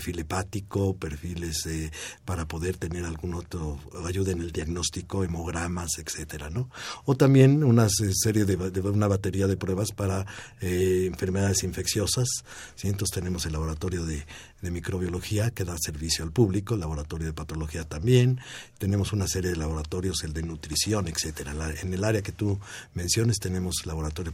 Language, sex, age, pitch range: Spanish, male, 50-69, 80-100 Hz